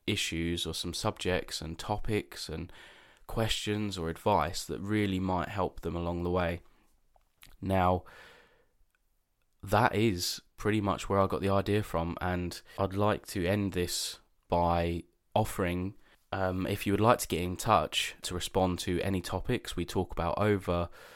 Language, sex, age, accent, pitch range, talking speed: English, male, 20-39, British, 85-105 Hz, 155 wpm